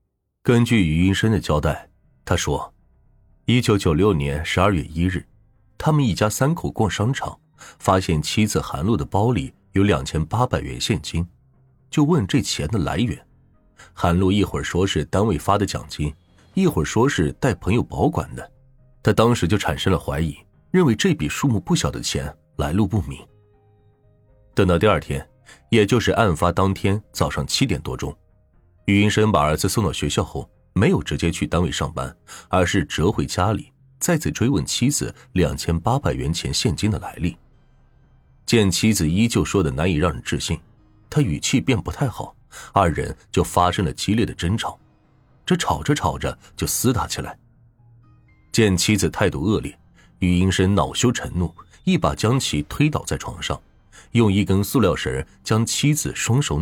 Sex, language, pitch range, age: male, Chinese, 85-115 Hz, 30-49